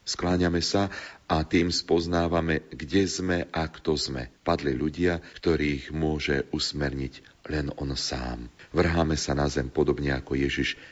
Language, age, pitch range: Slovak, 40-59, 70-85 Hz